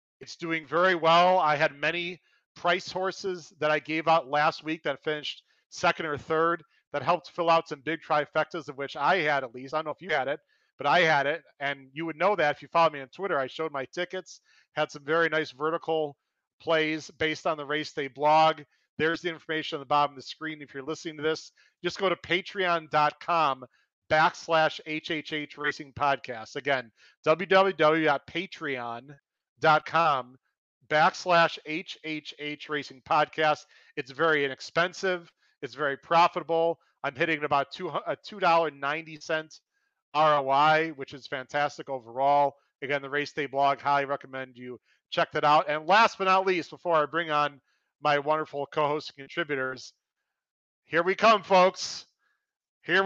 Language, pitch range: English, 145-170 Hz